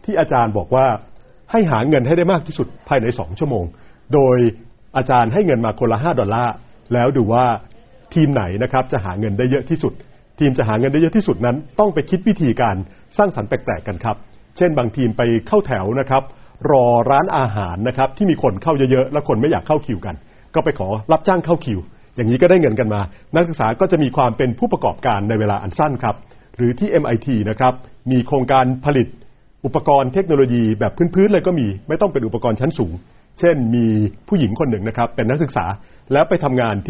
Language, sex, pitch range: Thai, male, 110-145 Hz